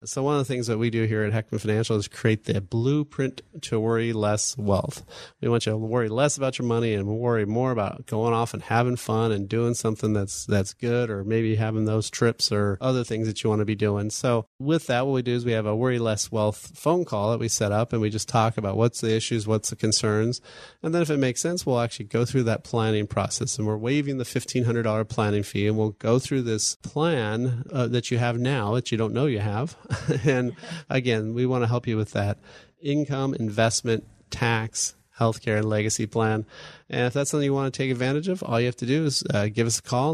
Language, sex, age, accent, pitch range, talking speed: English, male, 30-49, American, 110-130 Hz, 240 wpm